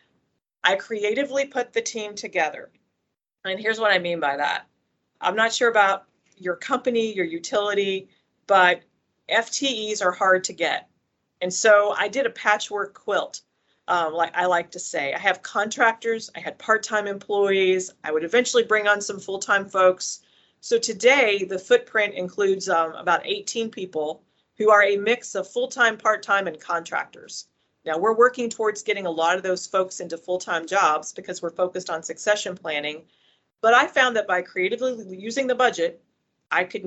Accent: American